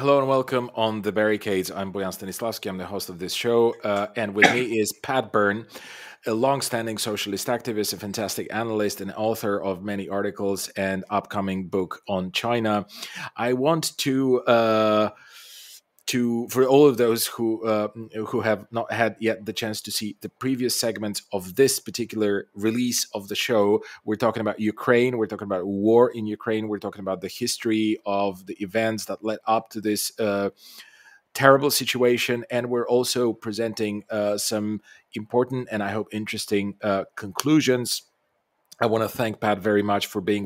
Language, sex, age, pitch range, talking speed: English, male, 30-49, 105-125 Hz, 175 wpm